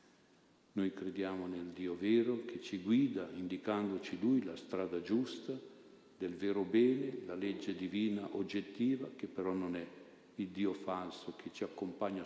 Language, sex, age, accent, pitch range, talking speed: Italian, male, 50-69, native, 85-100 Hz, 145 wpm